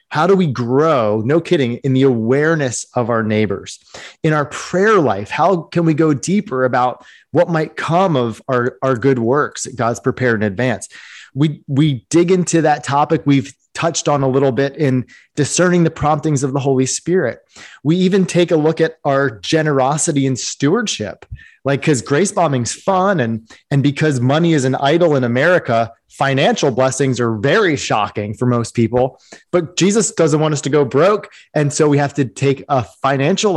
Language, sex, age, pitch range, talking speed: English, male, 30-49, 130-165 Hz, 185 wpm